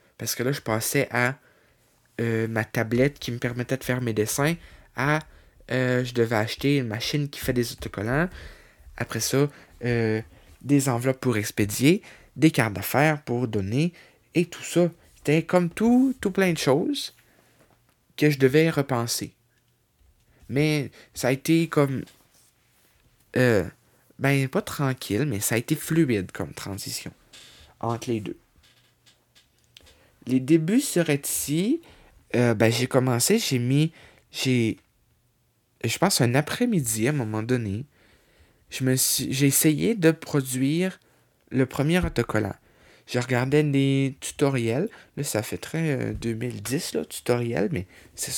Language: French